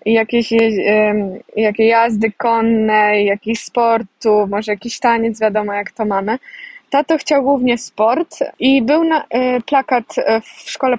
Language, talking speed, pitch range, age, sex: Polish, 125 wpm, 220-260 Hz, 20-39, female